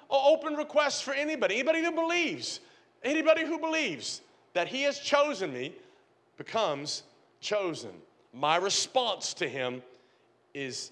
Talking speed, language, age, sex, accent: 120 wpm, English, 40-59, male, American